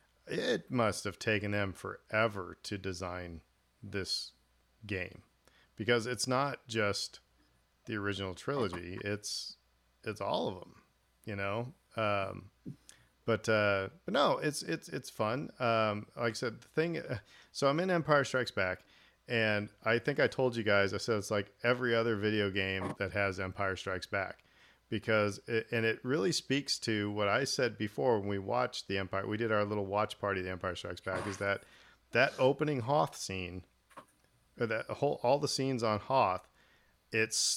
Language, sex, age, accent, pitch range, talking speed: English, male, 40-59, American, 95-115 Hz, 170 wpm